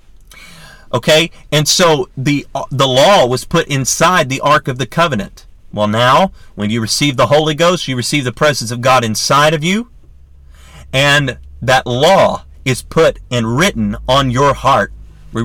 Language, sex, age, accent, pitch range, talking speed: English, male, 40-59, American, 120-150 Hz, 165 wpm